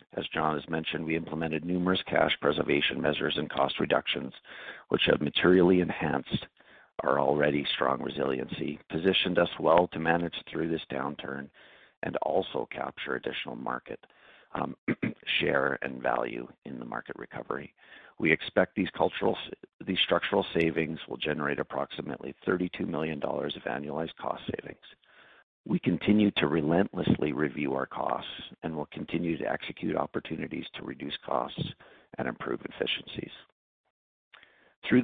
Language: English